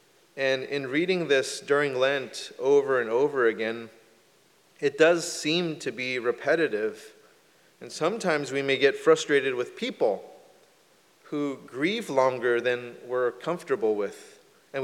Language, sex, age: English, male, 30-49